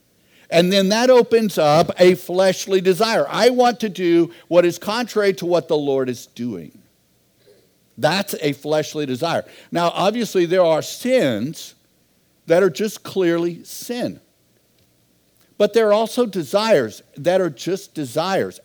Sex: male